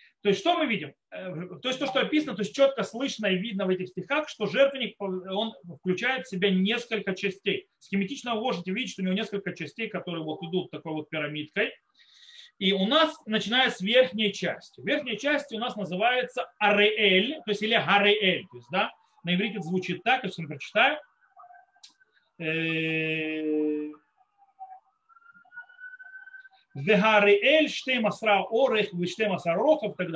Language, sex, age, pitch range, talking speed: Russian, male, 40-59, 180-245 Hz, 140 wpm